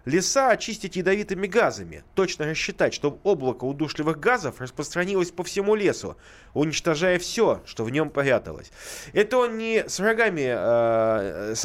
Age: 20-39